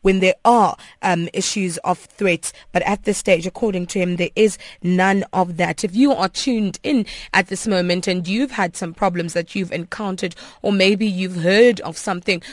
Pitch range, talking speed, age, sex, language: 180-225 Hz, 195 wpm, 20-39, female, English